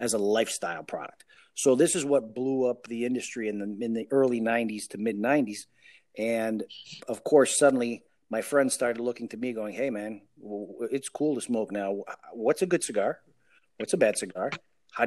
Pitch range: 110-140 Hz